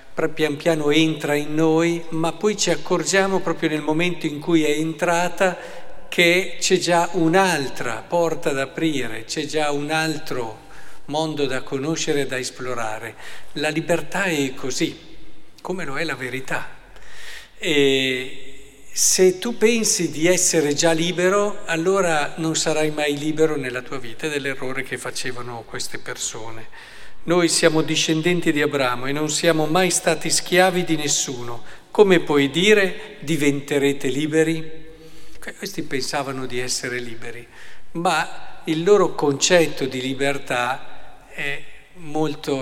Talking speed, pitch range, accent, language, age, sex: 130 wpm, 130-165 Hz, native, Italian, 50-69, male